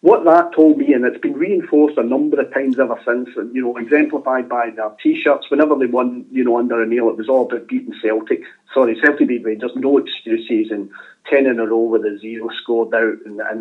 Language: English